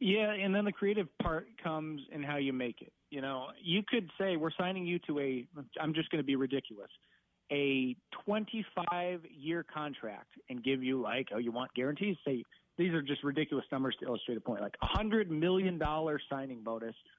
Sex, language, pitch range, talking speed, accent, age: male, English, 130-165 Hz, 195 wpm, American, 30-49